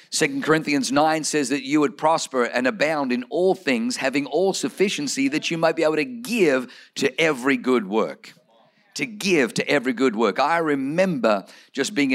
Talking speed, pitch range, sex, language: 185 wpm, 130-185 Hz, male, English